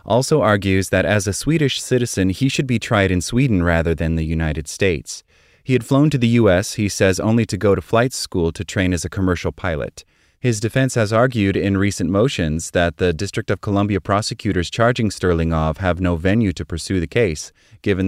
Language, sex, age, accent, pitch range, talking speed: English, male, 30-49, American, 85-110 Hz, 205 wpm